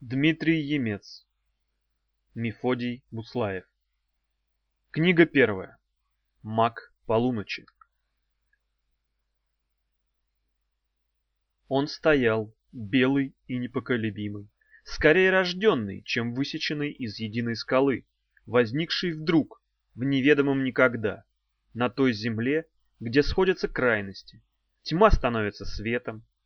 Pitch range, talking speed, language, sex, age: 100-140 Hz, 75 wpm, Russian, male, 30-49